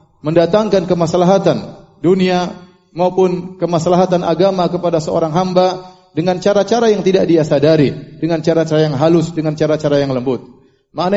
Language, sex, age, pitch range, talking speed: Indonesian, male, 30-49, 160-195 Hz, 130 wpm